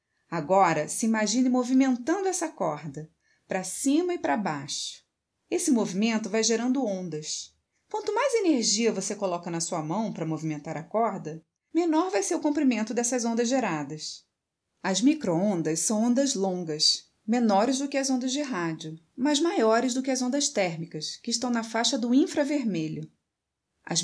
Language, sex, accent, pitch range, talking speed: Portuguese, female, Brazilian, 180-275 Hz, 155 wpm